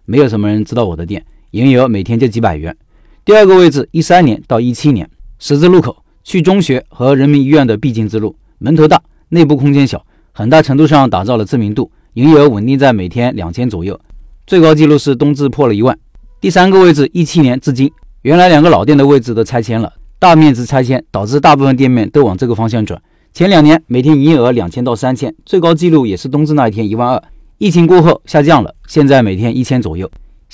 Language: Chinese